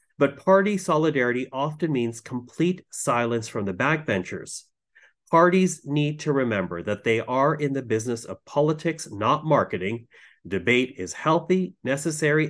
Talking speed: 135 wpm